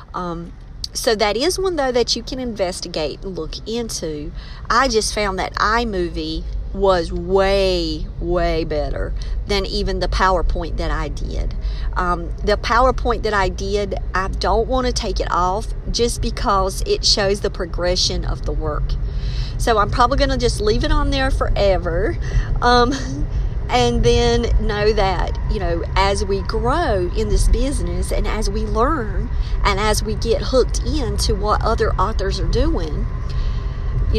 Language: English